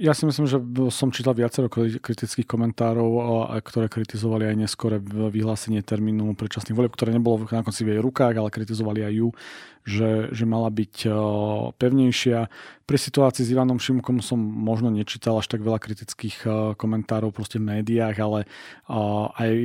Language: Slovak